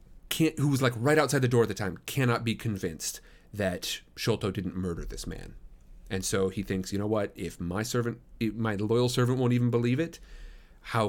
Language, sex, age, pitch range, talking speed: English, male, 30-49, 95-125 Hz, 200 wpm